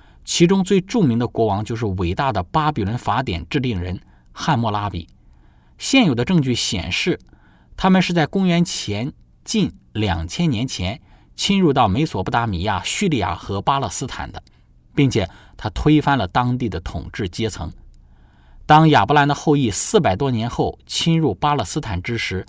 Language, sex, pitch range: Chinese, male, 90-150 Hz